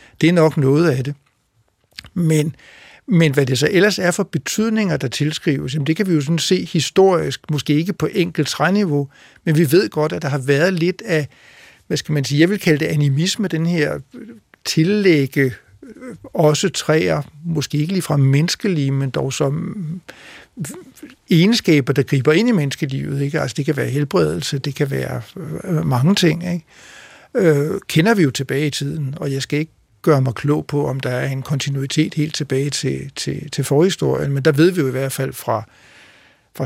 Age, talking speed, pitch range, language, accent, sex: 60-79, 185 wpm, 140-165 Hz, Danish, native, male